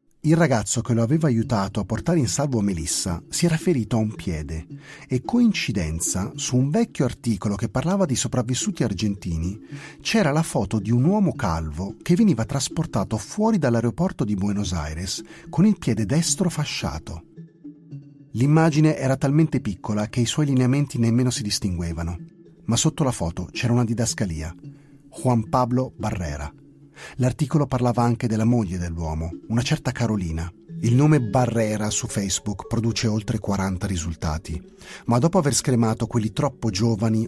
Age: 40-59